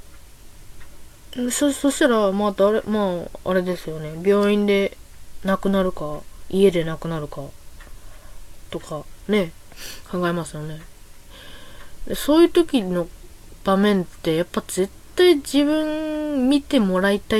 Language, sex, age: Japanese, female, 20-39